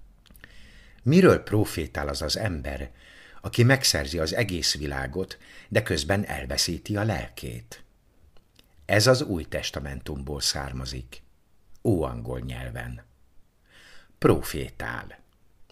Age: 60-79